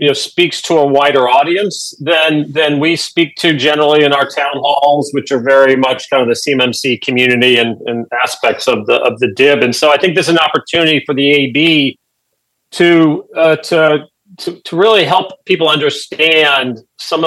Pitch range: 130-155 Hz